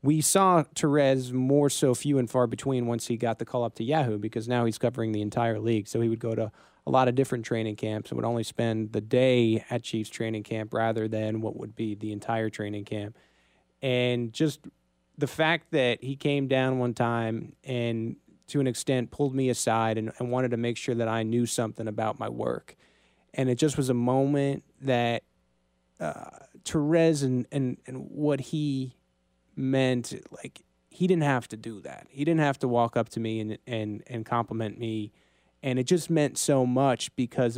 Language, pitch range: English, 110-130 Hz